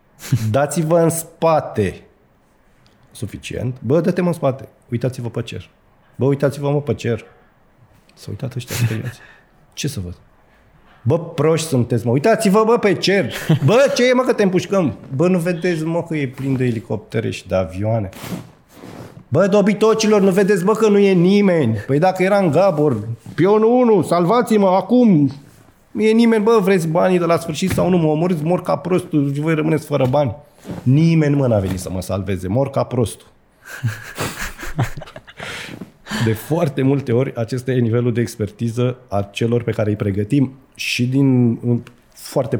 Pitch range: 115-170 Hz